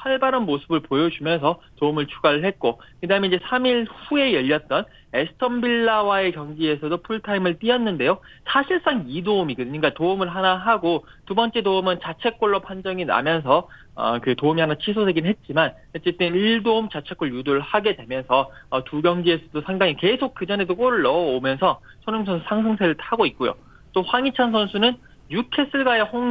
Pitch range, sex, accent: 160-225 Hz, male, native